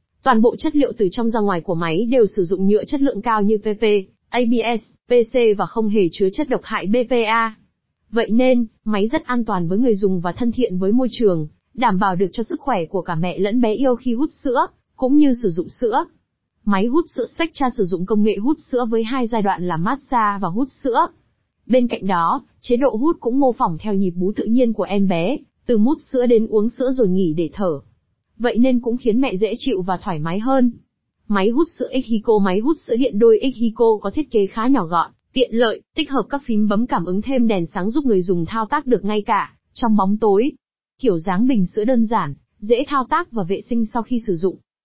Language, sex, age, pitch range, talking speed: Vietnamese, female, 20-39, 200-255 Hz, 235 wpm